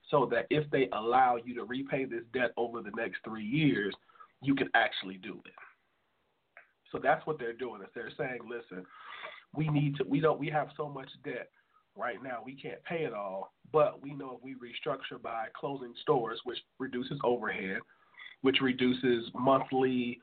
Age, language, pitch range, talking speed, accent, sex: 40-59, English, 120-145 Hz, 180 wpm, American, male